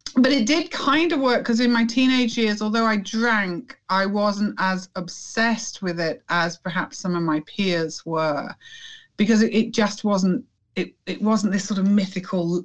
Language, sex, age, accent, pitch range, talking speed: English, female, 40-59, British, 175-240 Hz, 185 wpm